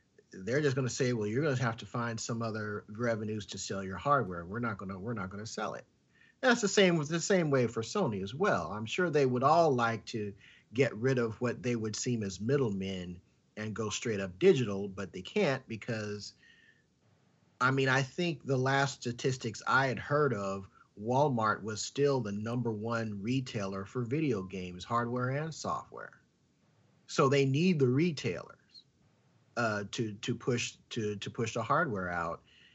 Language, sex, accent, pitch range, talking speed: English, male, American, 110-145 Hz, 190 wpm